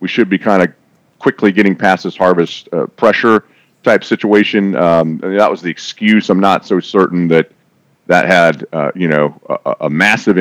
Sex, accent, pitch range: male, American, 90-115 Hz